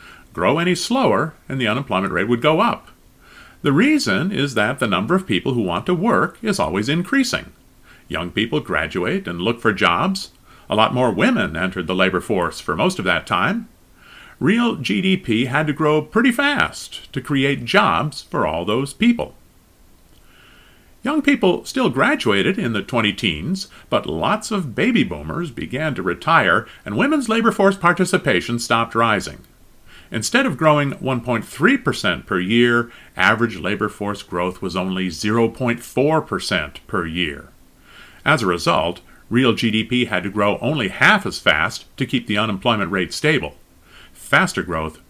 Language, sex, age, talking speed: English, male, 40-59, 155 wpm